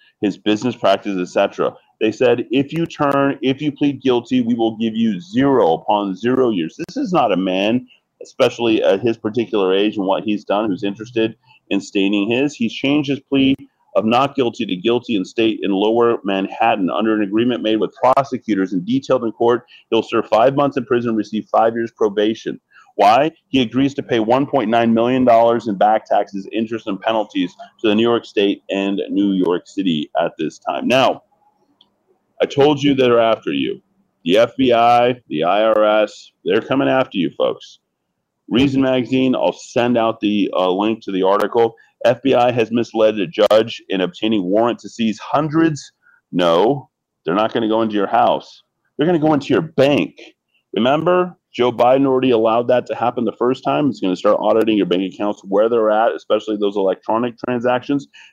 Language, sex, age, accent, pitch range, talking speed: English, male, 30-49, American, 110-140 Hz, 185 wpm